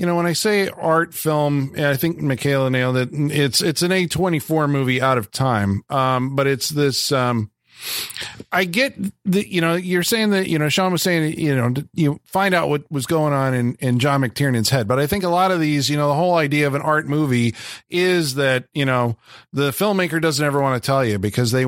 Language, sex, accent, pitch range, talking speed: English, male, American, 130-165 Hz, 230 wpm